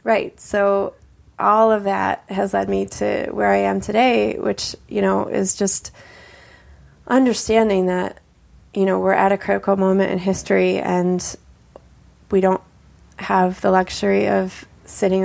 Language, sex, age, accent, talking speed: English, female, 20-39, American, 145 wpm